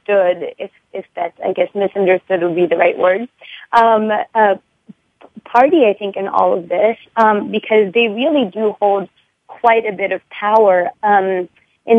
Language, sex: English, female